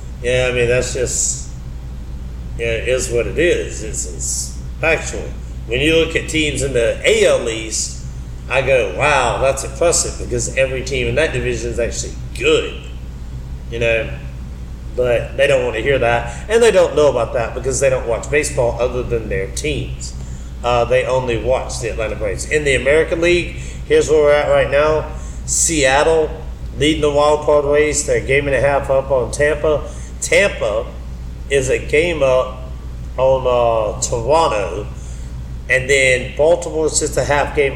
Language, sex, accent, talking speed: English, male, American, 175 wpm